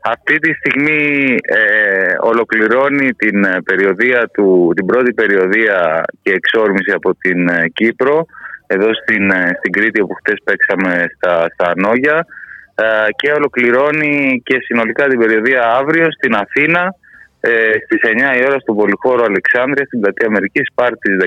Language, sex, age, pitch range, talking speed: Greek, male, 20-39, 100-150 Hz, 145 wpm